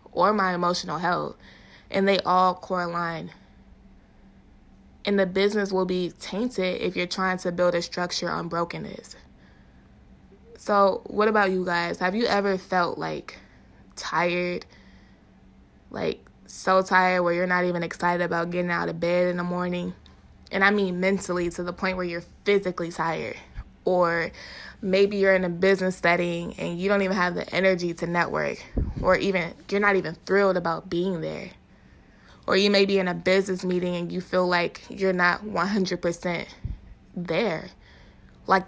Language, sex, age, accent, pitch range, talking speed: English, female, 20-39, American, 175-190 Hz, 160 wpm